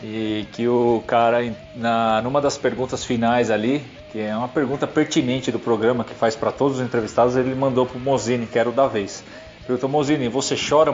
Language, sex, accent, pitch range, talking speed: Portuguese, male, Brazilian, 120-145 Hz, 195 wpm